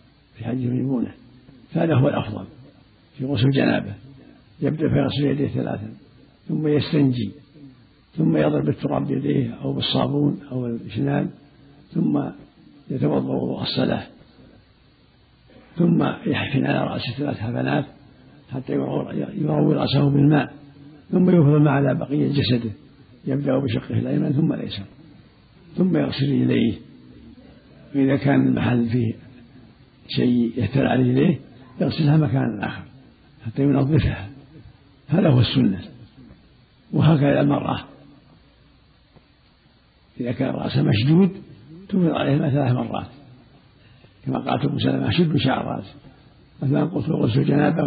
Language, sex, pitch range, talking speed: Arabic, male, 125-150 Hz, 105 wpm